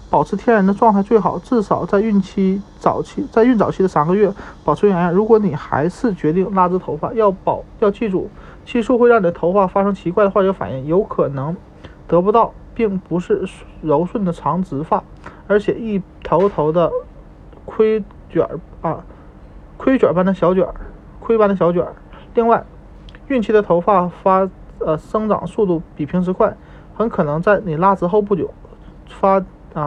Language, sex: Chinese, male